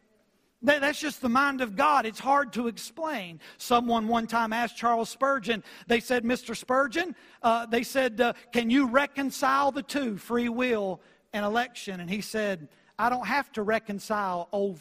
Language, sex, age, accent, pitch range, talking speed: English, male, 50-69, American, 215-265 Hz, 170 wpm